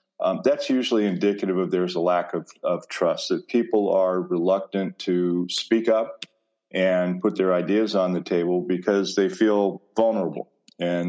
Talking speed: 160 wpm